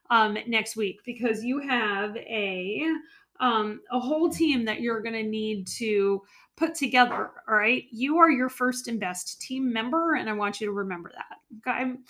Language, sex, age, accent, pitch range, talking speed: English, female, 30-49, American, 220-300 Hz, 185 wpm